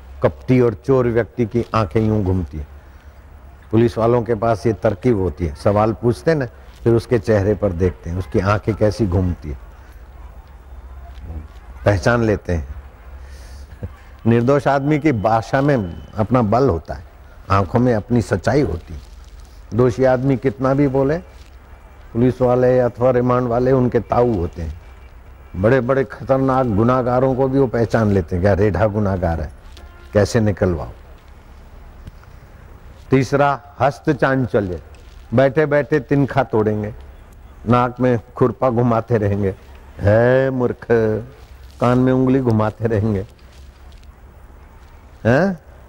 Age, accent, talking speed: 60-79, native, 95 wpm